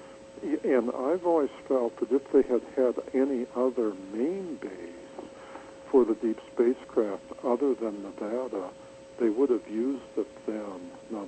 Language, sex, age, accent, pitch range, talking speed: English, male, 60-79, American, 110-145 Hz, 145 wpm